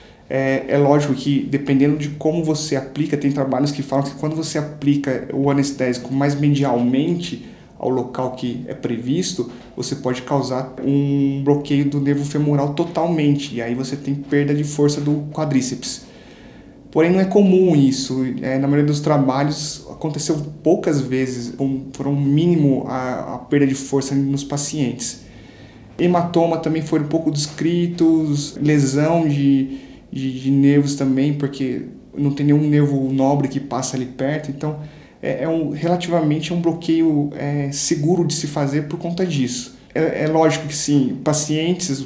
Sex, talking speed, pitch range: male, 155 wpm, 135-155 Hz